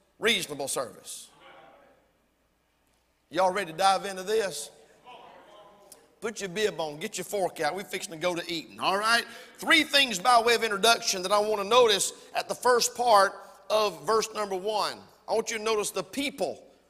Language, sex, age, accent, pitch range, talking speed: English, male, 50-69, American, 210-295 Hz, 175 wpm